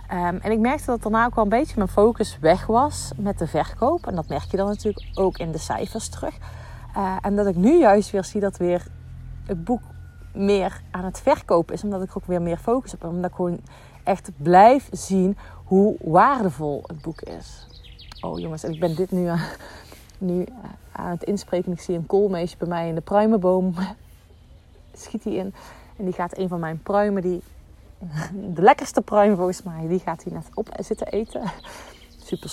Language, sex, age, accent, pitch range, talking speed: Dutch, female, 30-49, Dutch, 165-205 Hz, 200 wpm